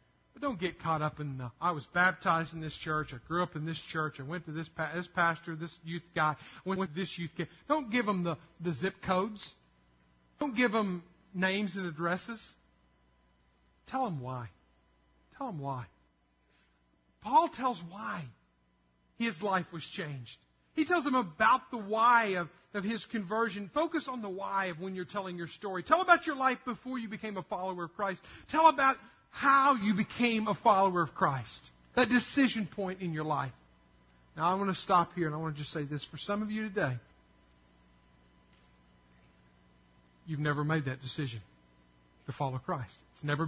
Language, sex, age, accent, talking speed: English, male, 50-69, American, 185 wpm